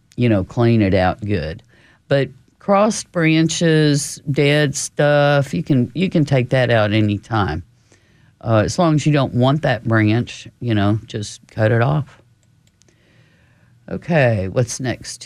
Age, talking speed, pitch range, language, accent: 50-69, 140 wpm, 110-135 Hz, English, American